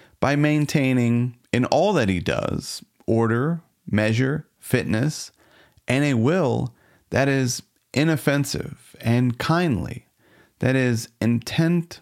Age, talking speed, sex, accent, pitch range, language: 40-59, 105 wpm, male, American, 105-140 Hz, English